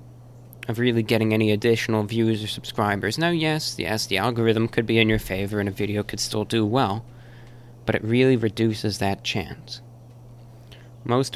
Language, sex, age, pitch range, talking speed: English, male, 20-39, 110-120 Hz, 170 wpm